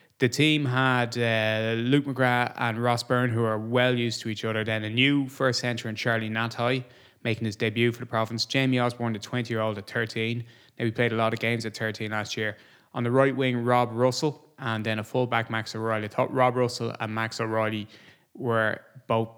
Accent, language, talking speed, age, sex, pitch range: Irish, English, 210 wpm, 20-39, male, 110-130 Hz